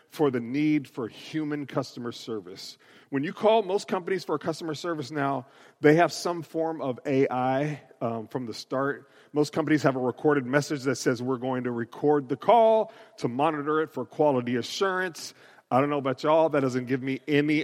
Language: English